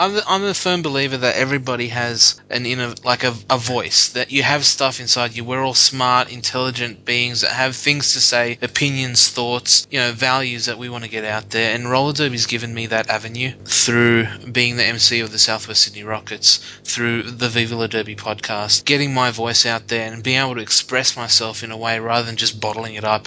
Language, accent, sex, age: English, Australian, male, 20-39